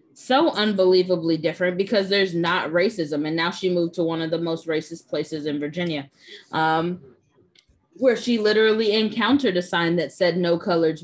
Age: 20-39